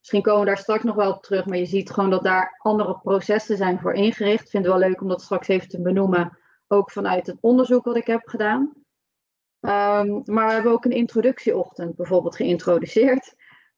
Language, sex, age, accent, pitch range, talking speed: Dutch, female, 30-49, Dutch, 190-230 Hz, 205 wpm